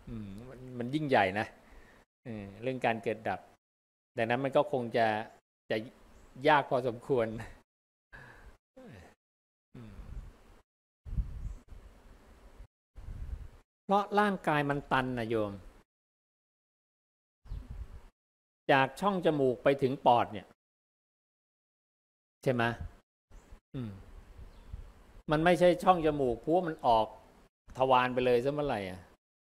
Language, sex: English, male